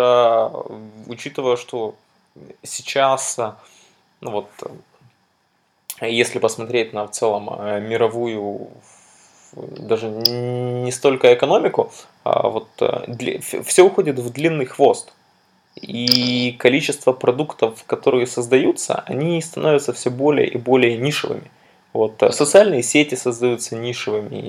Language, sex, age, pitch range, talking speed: Russian, male, 20-39, 115-150 Hz, 95 wpm